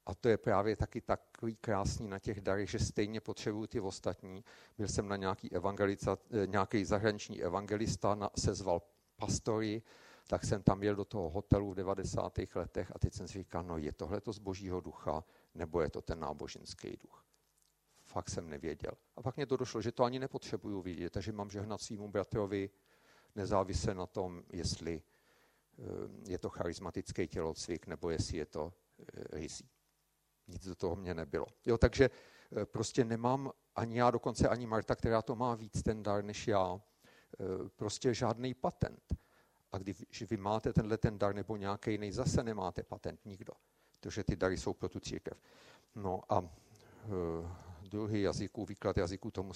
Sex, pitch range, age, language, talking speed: male, 95-110 Hz, 50-69, Czech, 165 wpm